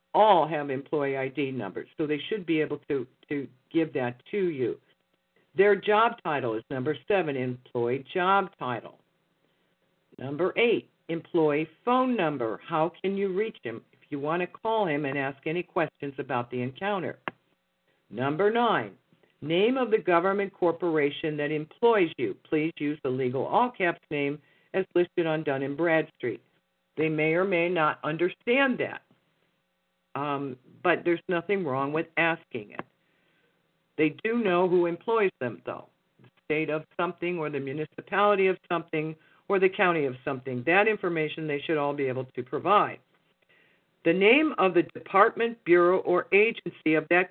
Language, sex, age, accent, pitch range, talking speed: English, female, 60-79, American, 145-190 Hz, 155 wpm